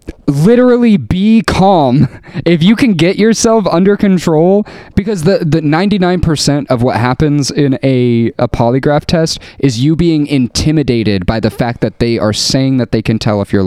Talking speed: 170 wpm